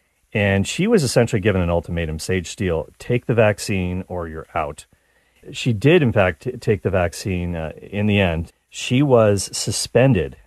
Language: English